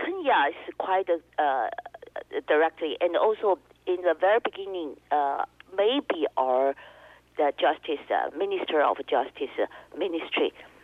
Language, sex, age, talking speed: English, female, 50-69, 125 wpm